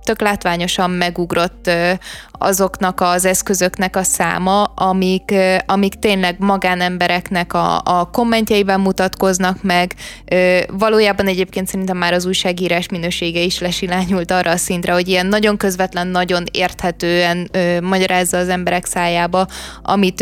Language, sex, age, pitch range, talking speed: Hungarian, female, 20-39, 180-210 Hz, 115 wpm